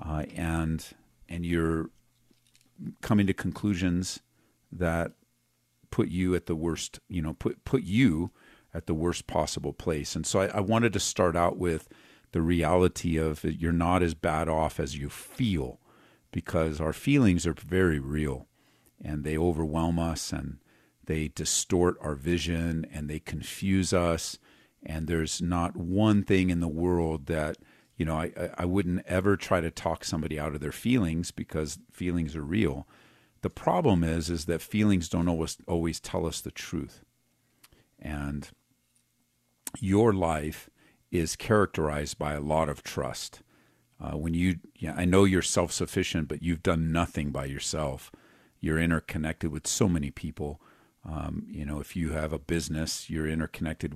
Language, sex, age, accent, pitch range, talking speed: English, male, 50-69, American, 80-90 Hz, 160 wpm